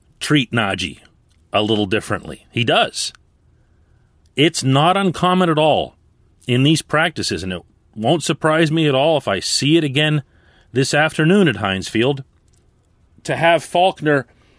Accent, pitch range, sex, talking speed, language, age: American, 105-160 Hz, male, 140 wpm, English, 40-59